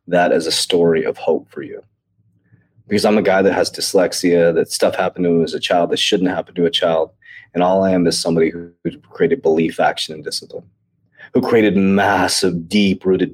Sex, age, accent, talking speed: male, 30-49, American, 205 wpm